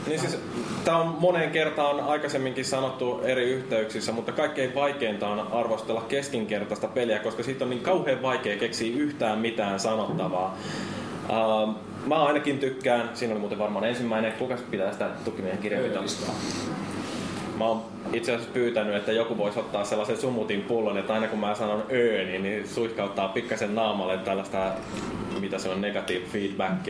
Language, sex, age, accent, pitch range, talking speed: Finnish, male, 20-39, native, 105-135 Hz, 150 wpm